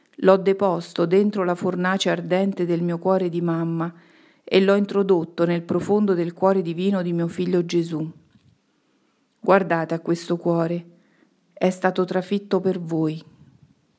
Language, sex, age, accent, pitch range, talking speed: Italian, female, 40-59, native, 170-195 Hz, 135 wpm